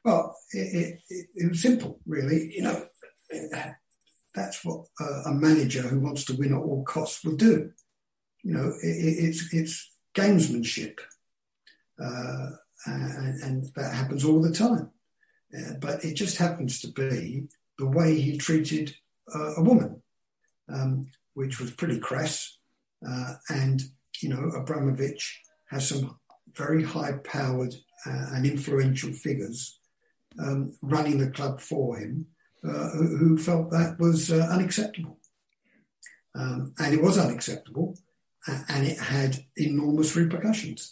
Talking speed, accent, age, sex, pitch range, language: 140 wpm, British, 50-69, male, 135-165 Hz, English